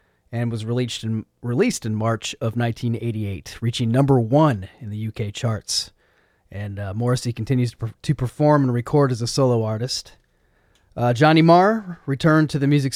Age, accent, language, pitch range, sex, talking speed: 30-49, American, English, 110-140 Hz, male, 160 wpm